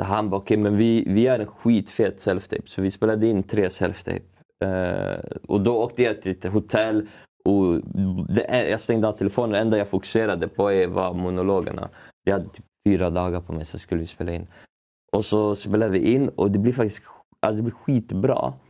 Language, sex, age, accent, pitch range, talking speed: Swedish, male, 20-39, native, 95-110 Hz, 200 wpm